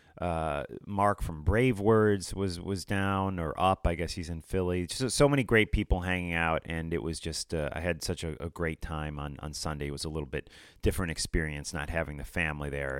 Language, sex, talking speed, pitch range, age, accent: English, male, 225 wpm, 75-100 Hz, 30-49, American